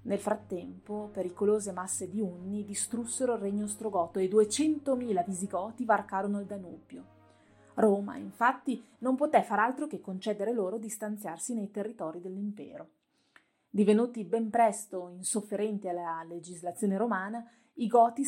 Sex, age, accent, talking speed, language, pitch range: female, 30-49, native, 125 wpm, Italian, 195-230 Hz